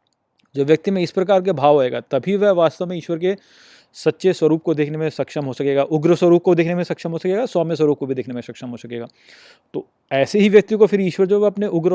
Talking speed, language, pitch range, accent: 245 wpm, Hindi, 145-200 Hz, native